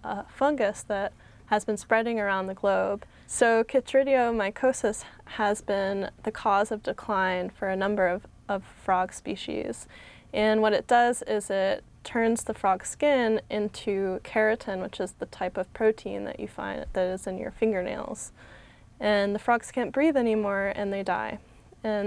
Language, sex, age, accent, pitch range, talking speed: English, female, 10-29, American, 200-235 Hz, 165 wpm